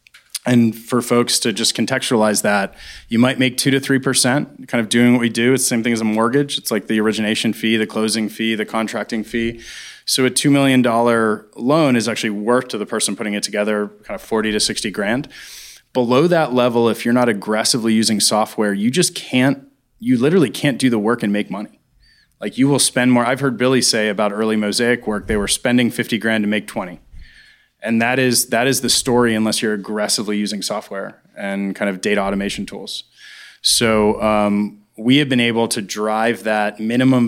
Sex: male